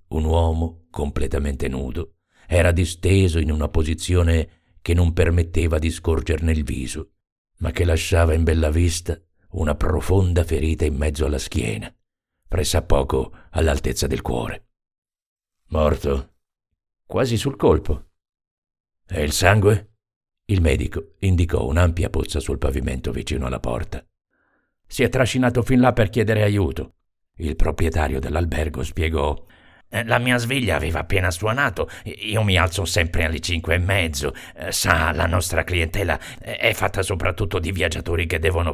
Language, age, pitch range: Italian, 50-69, 80-100 Hz